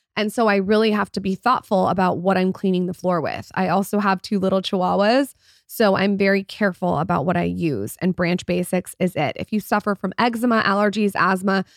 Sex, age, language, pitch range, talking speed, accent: female, 20-39, English, 180-205 Hz, 210 wpm, American